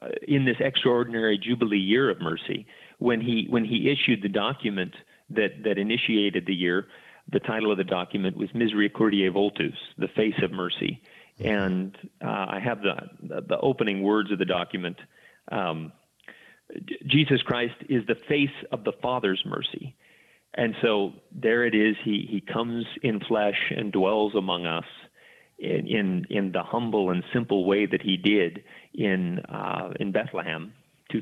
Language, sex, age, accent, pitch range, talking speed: English, male, 40-59, American, 95-115 Hz, 160 wpm